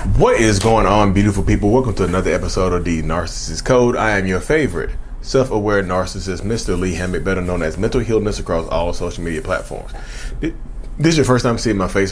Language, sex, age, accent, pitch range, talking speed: English, male, 20-39, American, 90-110 Hz, 205 wpm